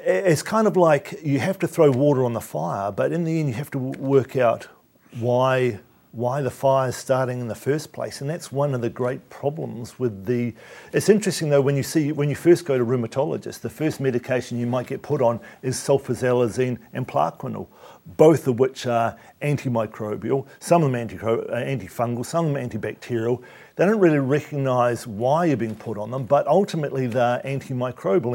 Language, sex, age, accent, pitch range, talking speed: English, male, 50-69, Australian, 125-150 Hz, 200 wpm